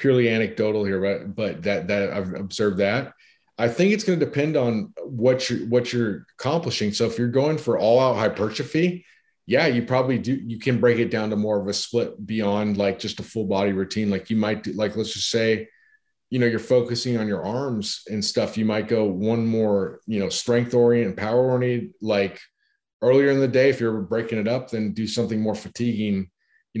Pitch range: 105-125 Hz